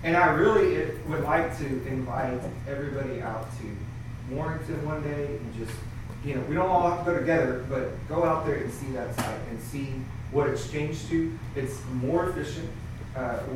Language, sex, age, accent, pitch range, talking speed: English, male, 30-49, American, 120-145 Hz, 185 wpm